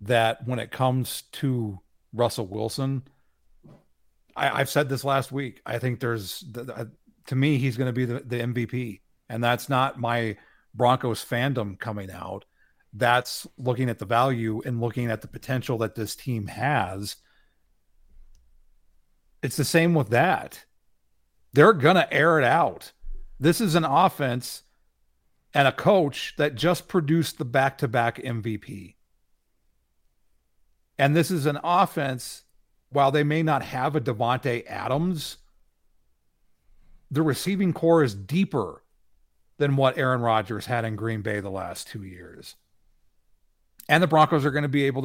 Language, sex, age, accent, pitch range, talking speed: English, male, 40-59, American, 90-145 Hz, 150 wpm